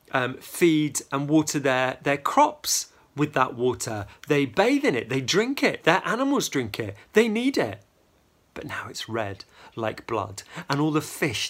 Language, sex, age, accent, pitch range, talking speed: English, male, 40-59, British, 110-145 Hz, 175 wpm